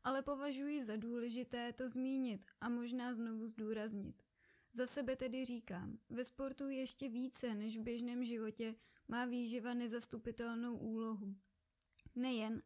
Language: Czech